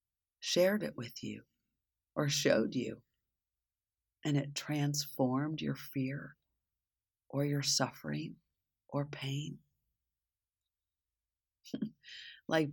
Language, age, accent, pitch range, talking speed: English, 50-69, American, 110-140 Hz, 85 wpm